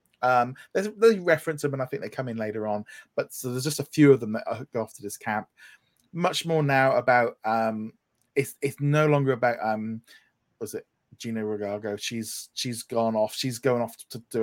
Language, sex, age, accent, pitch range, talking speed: English, male, 20-39, British, 110-150 Hz, 210 wpm